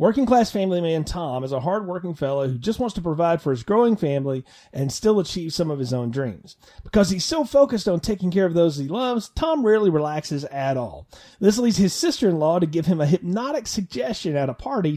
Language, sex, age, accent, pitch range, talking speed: English, male, 30-49, American, 145-200 Hz, 220 wpm